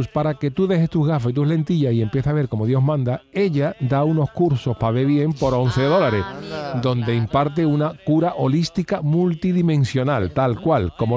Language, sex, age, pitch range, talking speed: Spanish, male, 40-59, 115-150 Hz, 190 wpm